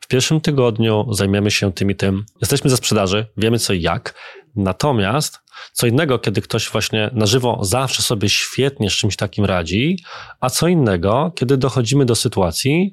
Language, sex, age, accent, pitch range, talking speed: Polish, male, 20-39, native, 105-130 Hz, 170 wpm